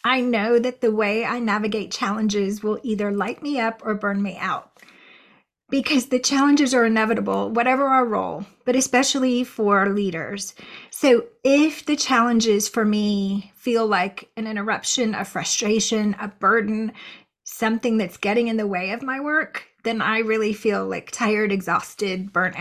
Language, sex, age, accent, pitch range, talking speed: English, female, 30-49, American, 210-255 Hz, 160 wpm